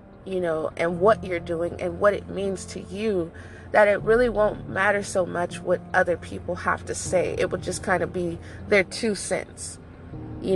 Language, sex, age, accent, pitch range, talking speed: English, female, 20-39, American, 180-225 Hz, 200 wpm